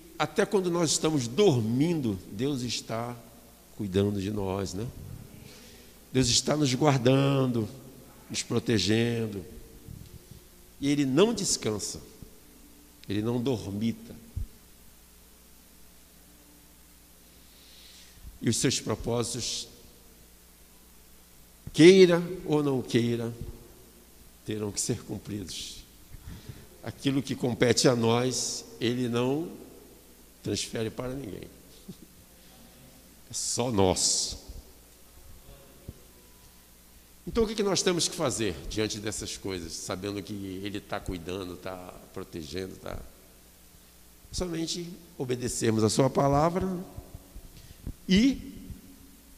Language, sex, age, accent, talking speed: Portuguese, male, 60-79, Brazilian, 90 wpm